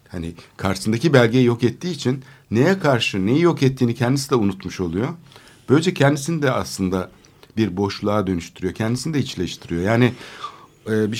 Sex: male